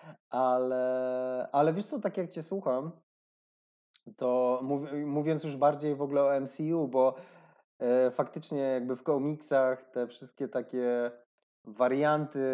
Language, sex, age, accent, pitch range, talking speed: Polish, male, 20-39, native, 130-160 Hz, 130 wpm